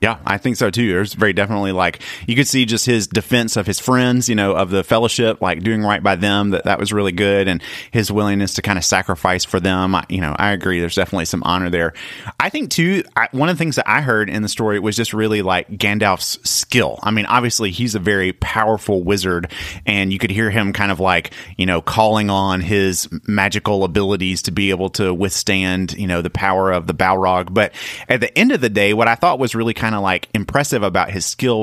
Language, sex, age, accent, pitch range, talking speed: English, male, 30-49, American, 95-115 Hz, 235 wpm